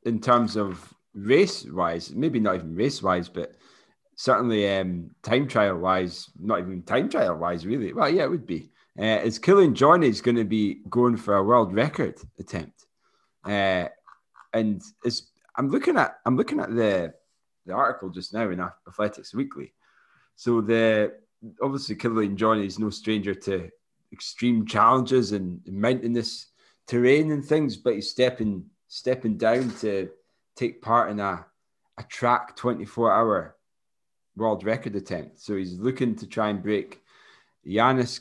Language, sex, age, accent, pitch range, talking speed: English, male, 30-49, British, 95-120 Hz, 150 wpm